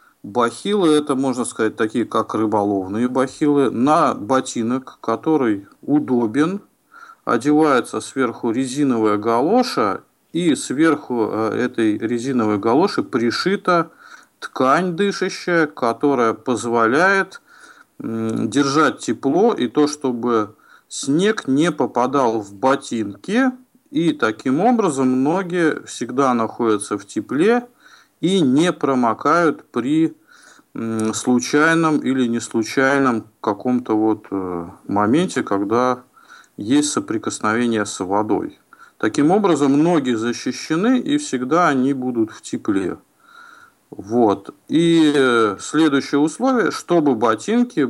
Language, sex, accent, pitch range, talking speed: Russian, male, native, 115-185 Hz, 95 wpm